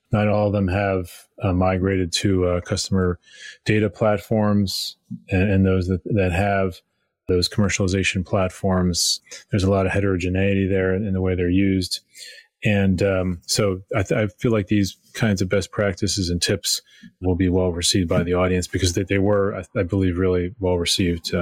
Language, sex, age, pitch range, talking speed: English, male, 30-49, 95-105 Hz, 170 wpm